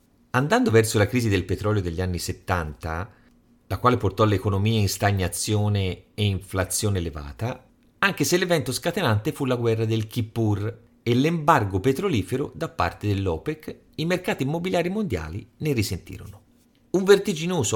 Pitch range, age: 95-140 Hz, 40-59